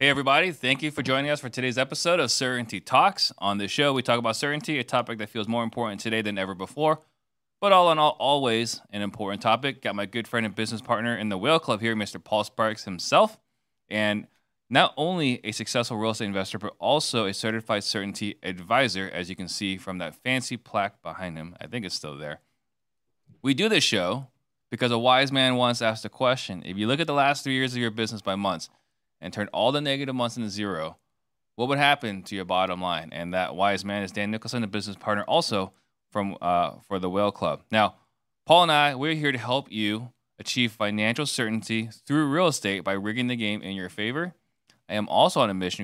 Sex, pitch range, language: male, 105-130 Hz, English